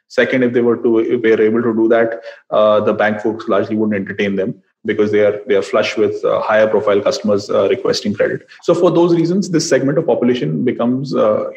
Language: English